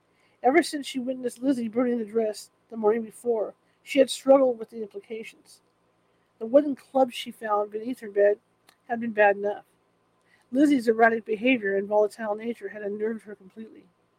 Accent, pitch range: American, 210-255 Hz